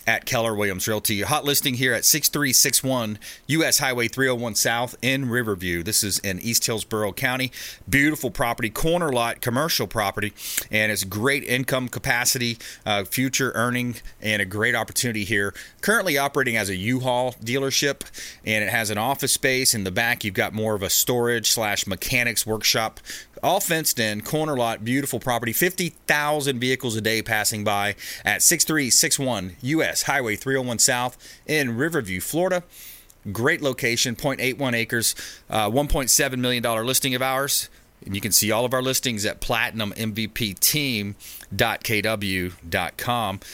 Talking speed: 145 wpm